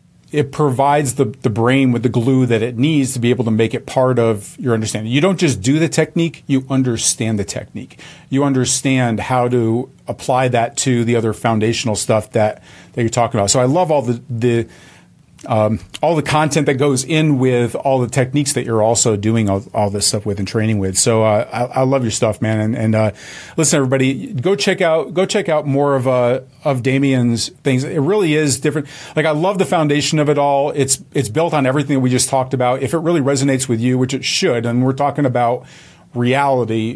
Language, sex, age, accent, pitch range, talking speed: English, male, 40-59, American, 120-145 Hz, 225 wpm